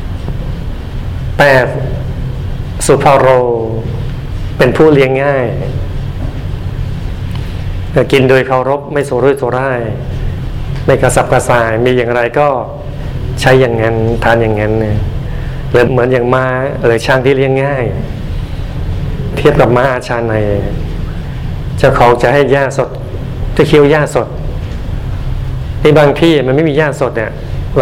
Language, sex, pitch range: Thai, male, 115-135 Hz